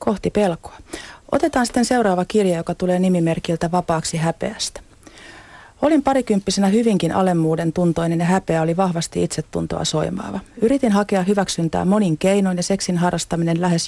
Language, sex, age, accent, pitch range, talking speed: Finnish, female, 40-59, native, 170-205 Hz, 135 wpm